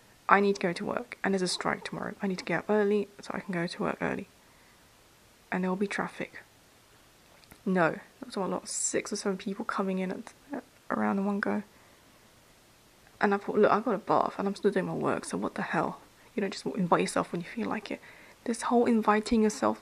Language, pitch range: English, 185-210 Hz